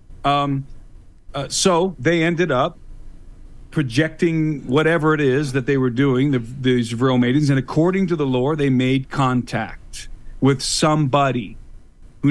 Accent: American